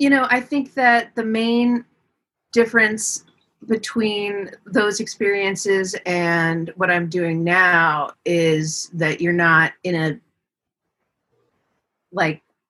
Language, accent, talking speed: English, American, 110 wpm